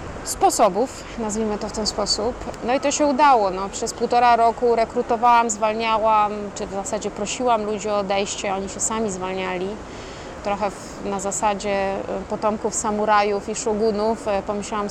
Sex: female